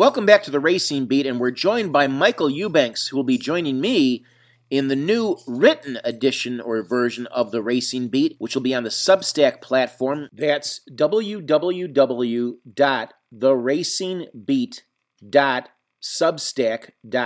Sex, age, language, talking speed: male, 40-59, English, 130 wpm